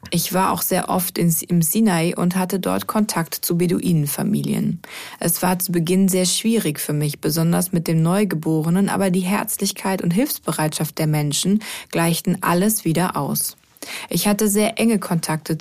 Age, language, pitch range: 20-39, German, 170-200 Hz